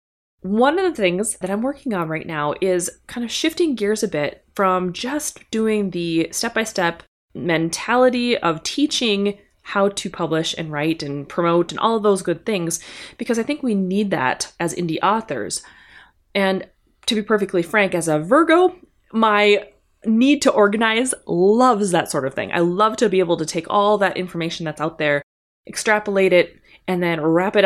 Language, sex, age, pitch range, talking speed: English, female, 20-39, 170-225 Hz, 180 wpm